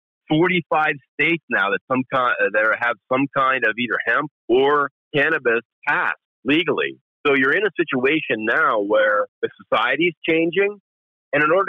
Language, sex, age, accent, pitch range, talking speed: English, male, 50-69, American, 120-175 Hz, 160 wpm